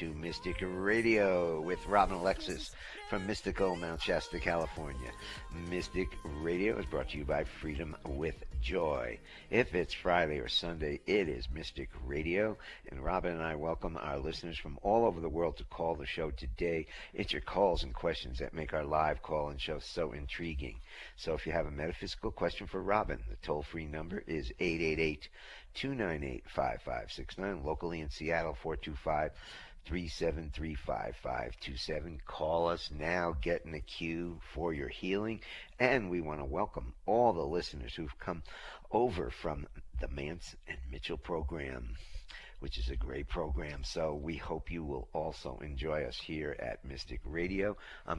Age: 60-79